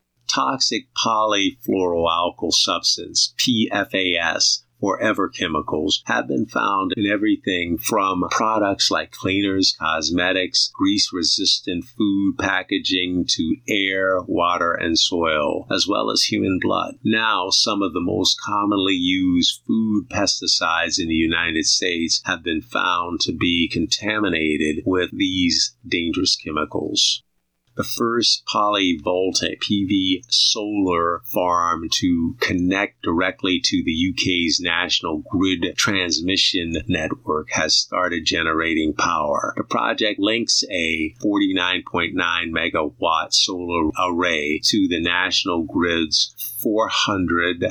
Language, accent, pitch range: English, American, 85-105 Hz